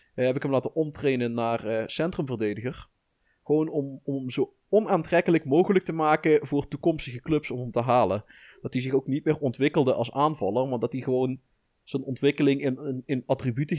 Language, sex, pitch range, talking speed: Dutch, male, 115-150 Hz, 190 wpm